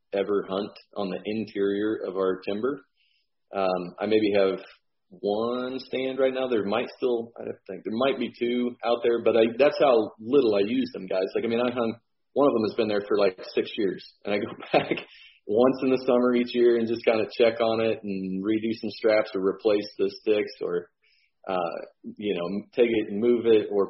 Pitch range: 100-135 Hz